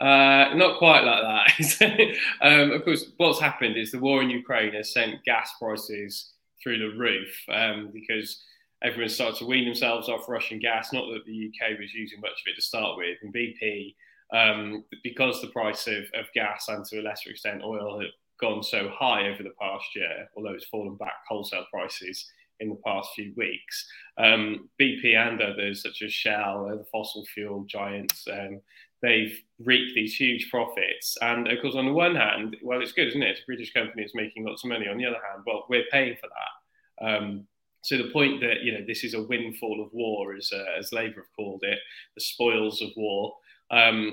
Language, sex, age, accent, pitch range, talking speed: English, male, 10-29, British, 105-125 Hz, 205 wpm